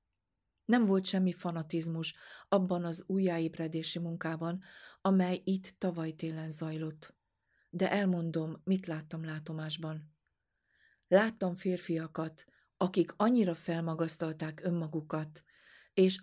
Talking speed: 90 wpm